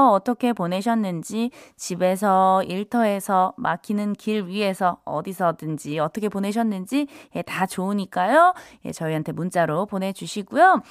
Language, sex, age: Korean, female, 20-39